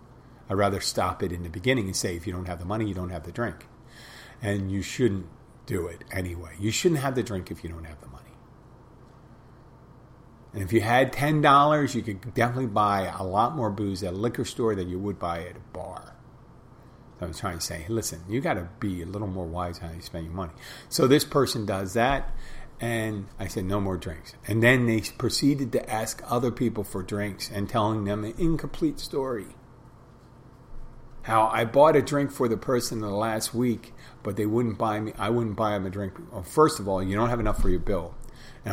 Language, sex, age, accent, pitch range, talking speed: English, male, 40-59, American, 95-120 Hz, 220 wpm